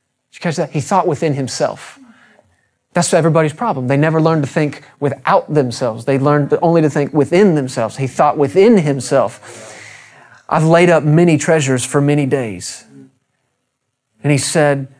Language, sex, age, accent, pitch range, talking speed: English, male, 30-49, American, 130-165 Hz, 150 wpm